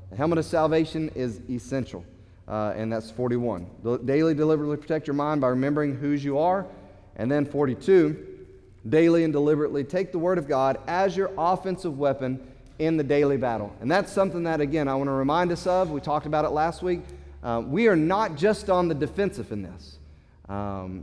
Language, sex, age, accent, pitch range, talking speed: English, male, 30-49, American, 125-180 Hz, 190 wpm